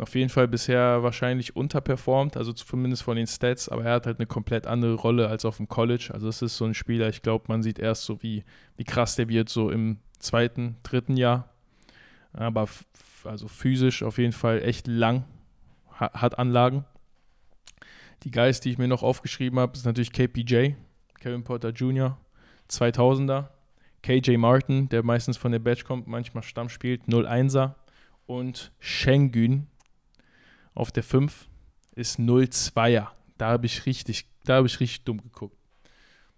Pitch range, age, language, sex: 110-125 Hz, 20-39, German, male